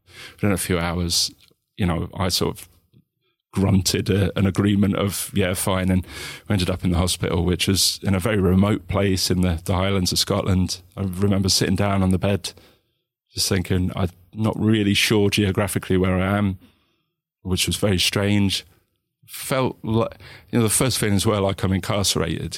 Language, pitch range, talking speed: English, 90-100 Hz, 185 wpm